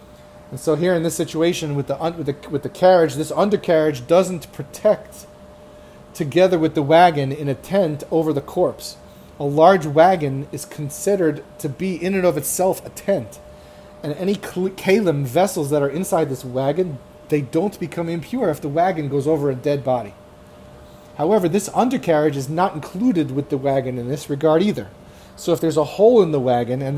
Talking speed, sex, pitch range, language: 185 wpm, male, 135-175 Hz, English